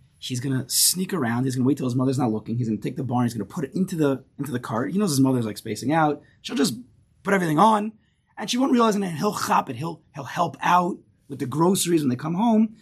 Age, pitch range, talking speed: 30-49, 120-155 Hz, 295 wpm